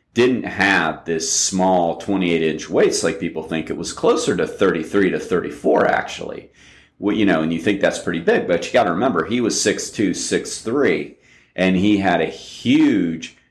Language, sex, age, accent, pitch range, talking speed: English, male, 40-59, American, 85-115 Hz, 180 wpm